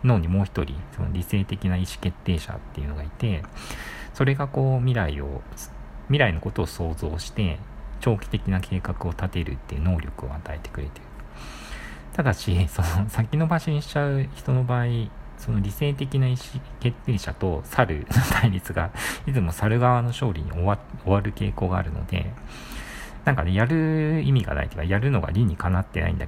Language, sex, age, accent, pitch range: Japanese, male, 50-69, native, 80-120 Hz